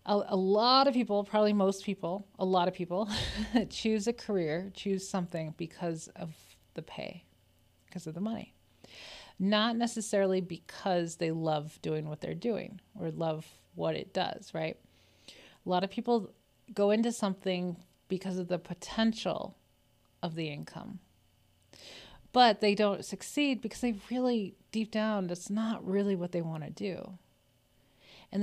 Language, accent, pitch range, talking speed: English, American, 175-215 Hz, 150 wpm